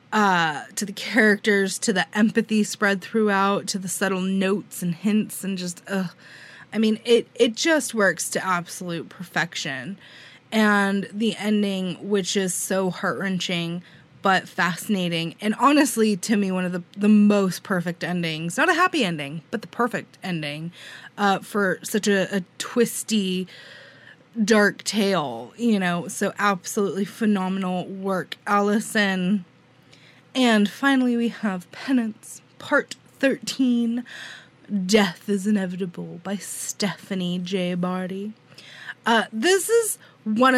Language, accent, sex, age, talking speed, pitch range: English, American, female, 20-39, 130 wpm, 185-230 Hz